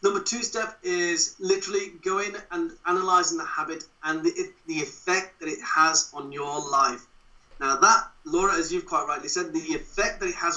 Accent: British